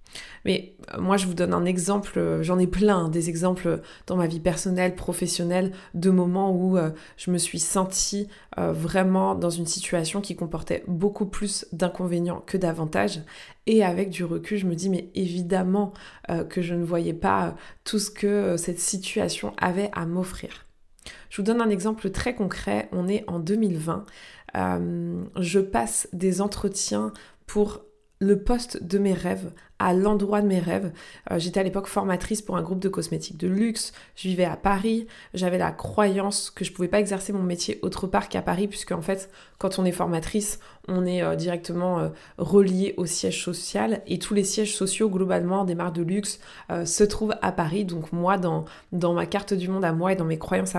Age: 20-39